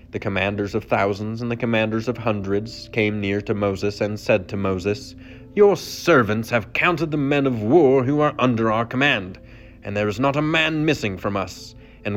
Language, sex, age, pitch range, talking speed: English, male, 30-49, 100-115 Hz, 195 wpm